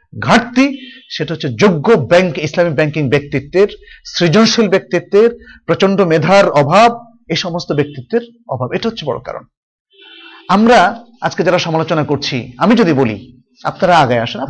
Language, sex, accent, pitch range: Bengali, male, native, 145-225 Hz